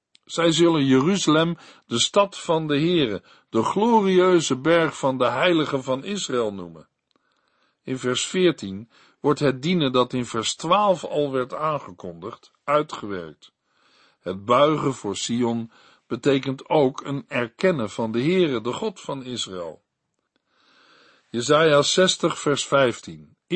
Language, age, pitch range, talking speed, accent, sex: Dutch, 60-79, 115-165 Hz, 125 wpm, Dutch, male